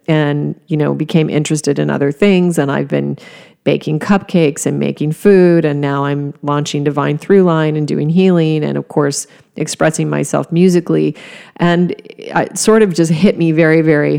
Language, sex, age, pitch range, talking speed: English, female, 40-59, 145-165 Hz, 170 wpm